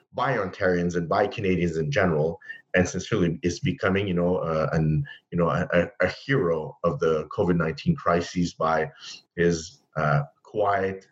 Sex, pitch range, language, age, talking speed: male, 85-115 Hz, English, 30-49, 155 wpm